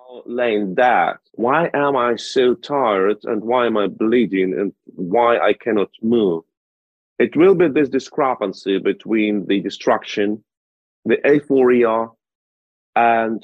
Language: English